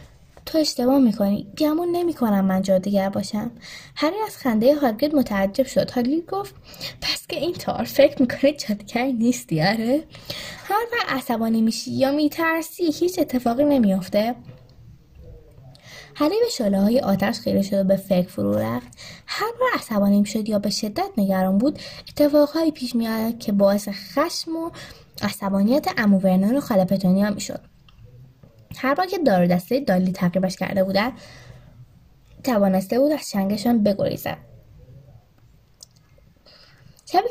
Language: Persian